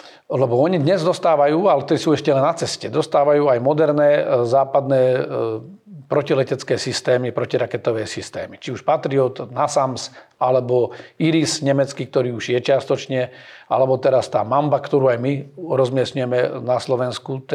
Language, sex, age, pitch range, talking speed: Slovak, male, 40-59, 130-150 Hz, 135 wpm